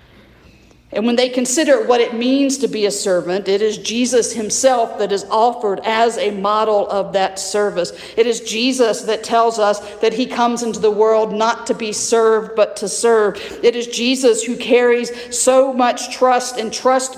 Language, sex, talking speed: English, female, 185 wpm